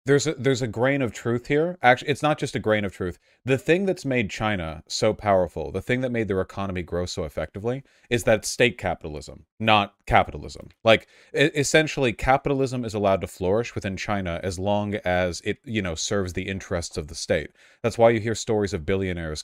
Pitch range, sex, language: 95-120 Hz, male, English